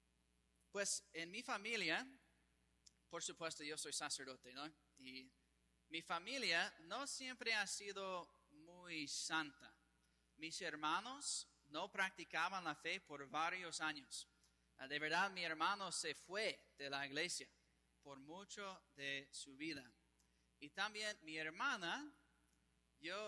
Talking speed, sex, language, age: 120 wpm, male, English, 30-49